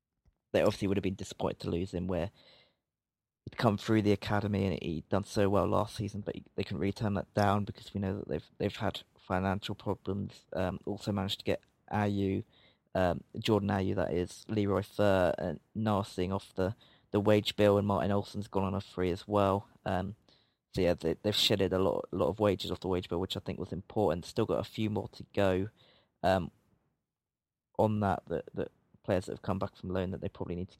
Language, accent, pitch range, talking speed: English, British, 95-105 Hz, 220 wpm